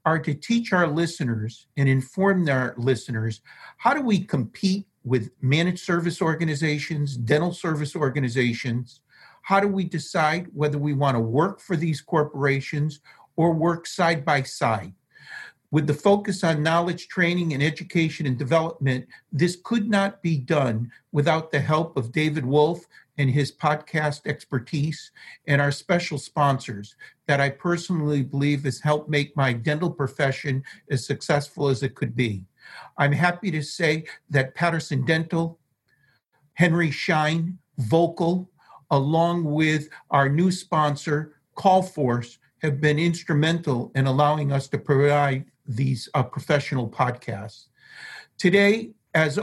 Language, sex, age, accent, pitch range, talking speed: English, male, 50-69, American, 140-170 Hz, 135 wpm